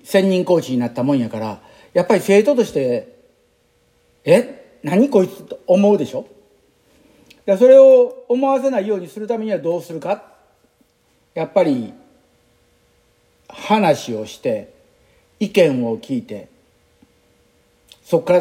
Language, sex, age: Japanese, male, 50-69